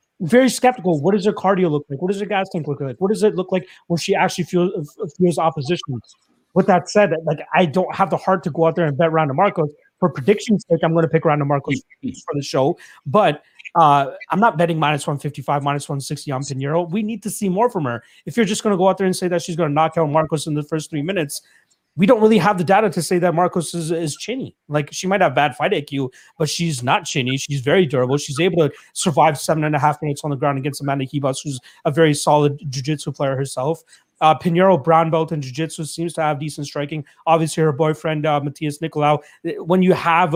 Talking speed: 245 wpm